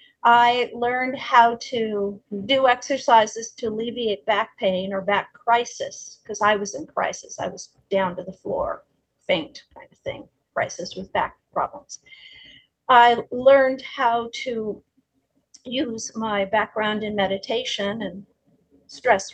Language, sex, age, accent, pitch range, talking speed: English, female, 50-69, American, 200-260 Hz, 135 wpm